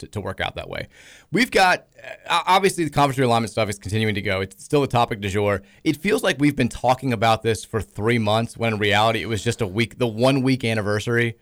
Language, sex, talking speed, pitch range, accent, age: English, male, 235 wpm, 105-135 Hz, American, 30-49